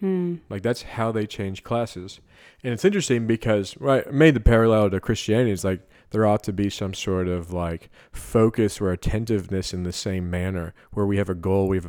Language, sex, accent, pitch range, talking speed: English, male, American, 95-115 Hz, 200 wpm